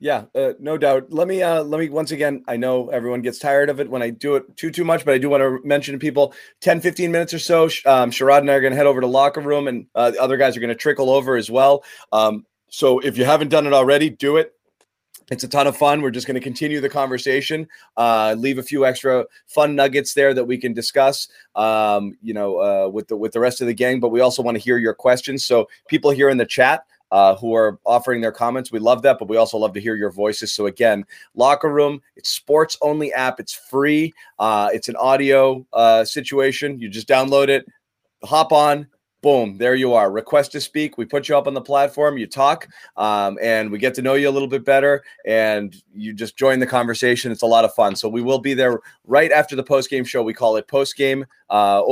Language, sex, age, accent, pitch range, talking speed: English, male, 30-49, American, 115-145 Hz, 245 wpm